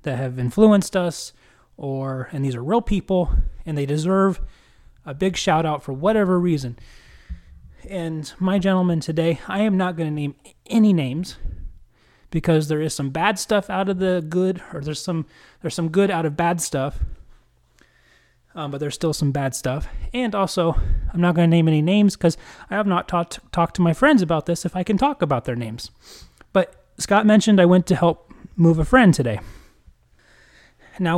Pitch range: 140-185 Hz